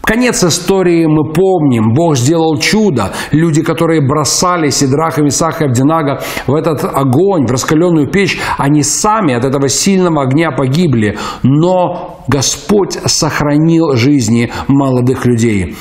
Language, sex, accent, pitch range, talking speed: Russian, male, native, 135-180 Hz, 130 wpm